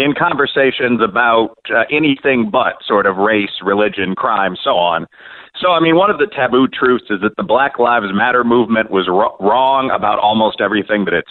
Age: 40-59